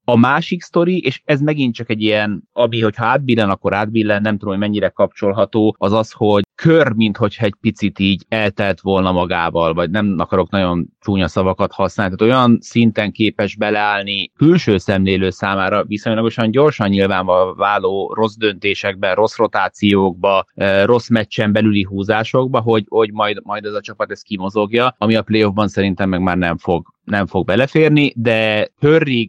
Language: Hungarian